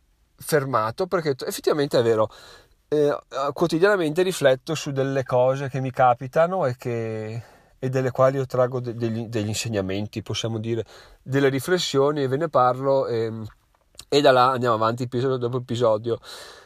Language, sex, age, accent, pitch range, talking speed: Italian, male, 30-49, native, 120-150 Hz, 145 wpm